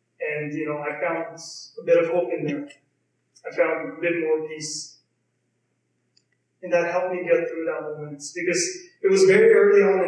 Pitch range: 155-185 Hz